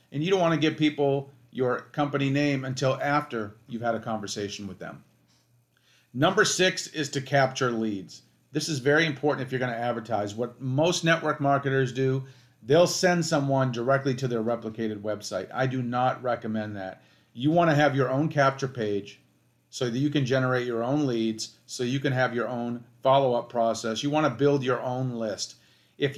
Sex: male